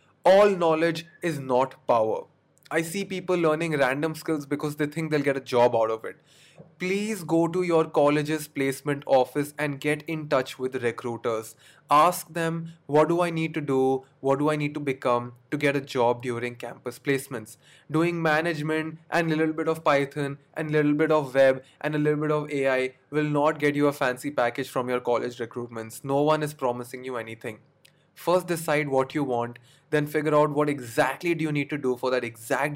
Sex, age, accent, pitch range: male, 20-39, Indian, 130-160 Hz